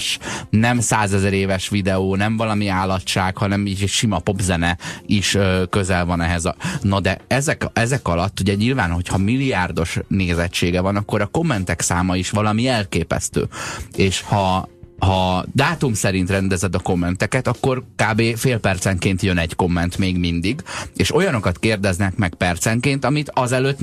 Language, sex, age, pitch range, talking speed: Hungarian, male, 30-49, 95-125 Hz, 150 wpm